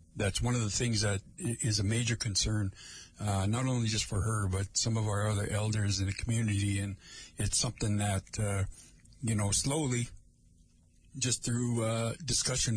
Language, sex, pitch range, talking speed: English, male, 100-125 Hz, 175 wpm